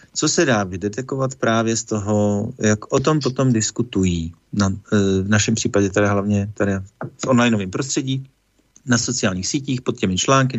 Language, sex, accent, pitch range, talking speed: Czech, male, native, 100-120 Hz, 165 wpm